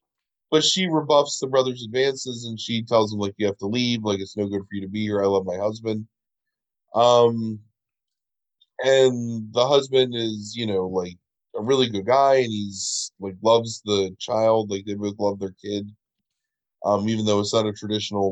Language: English